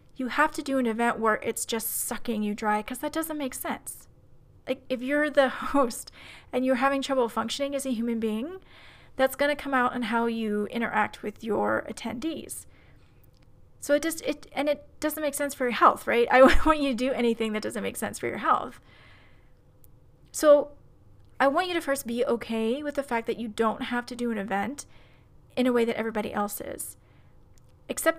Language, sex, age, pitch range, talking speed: English, female, 30-49, 225-265 Hz, 205 wpm